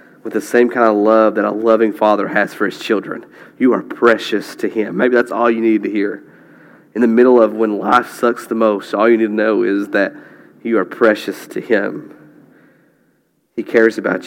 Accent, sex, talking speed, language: American, male, 210 wpm, English